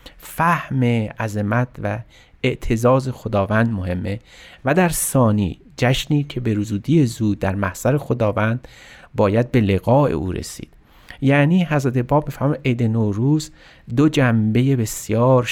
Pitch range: 105-130 Hz